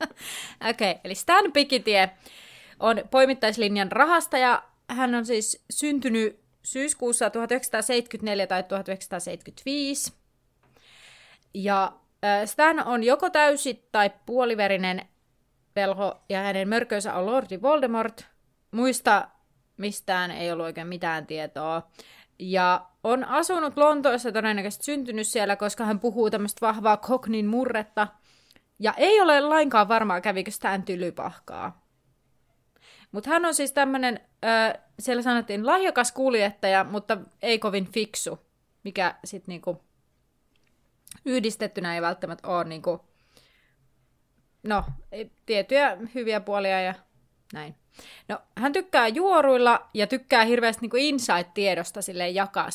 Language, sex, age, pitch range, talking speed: Finnish, female, 30-49, 190-250 Hz, 110 wpm